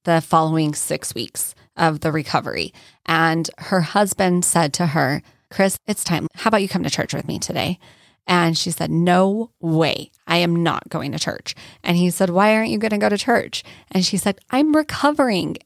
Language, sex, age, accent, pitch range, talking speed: English, female, 20-39, American, 165-210 Hz, 200 wpm